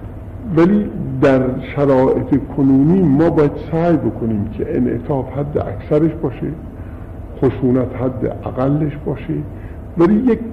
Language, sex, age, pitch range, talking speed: Persian, female, 50-69, 100-135 Hz, 110 wpm